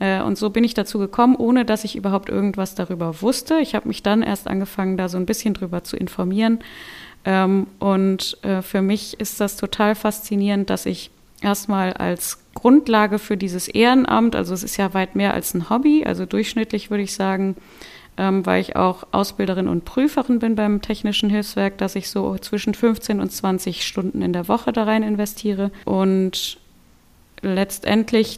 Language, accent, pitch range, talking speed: German, German, 190-225 Hz, 170 wpm